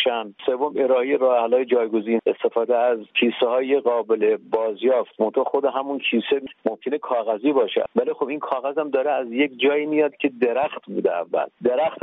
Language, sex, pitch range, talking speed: Persian, male, 120-140 Hz, 160 wpm